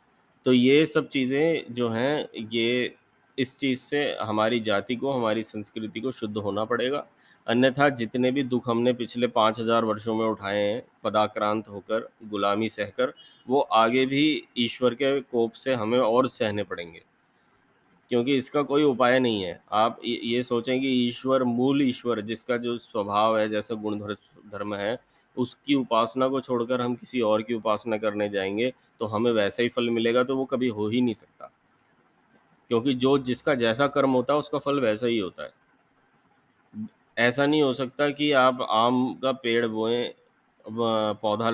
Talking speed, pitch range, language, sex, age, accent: 165 wpm, 110-130 Hz, Hindi, male, 30-49, native